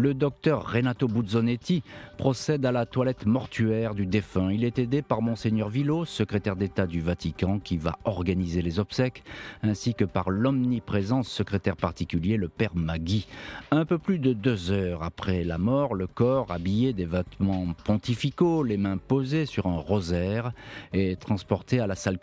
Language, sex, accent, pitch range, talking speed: French, male, French, 95-125 Hz, 165 wpm